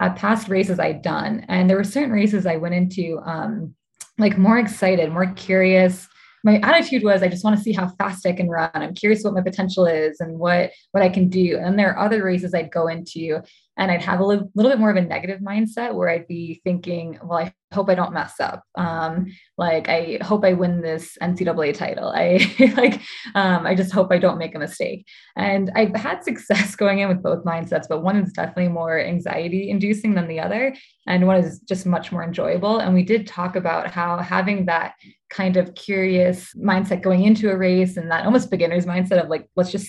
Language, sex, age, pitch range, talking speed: English, female, 20-39, 170-200 Hz, 220 wpm